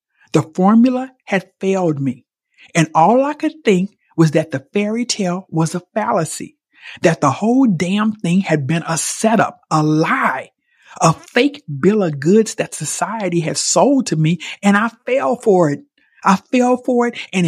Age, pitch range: 50-69, 165-220 Hz